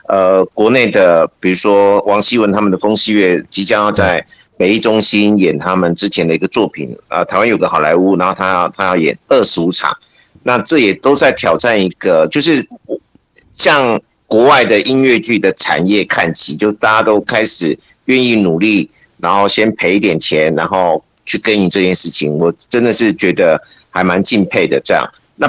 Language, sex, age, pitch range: Chinese, male, 50-69, 95-115 Hz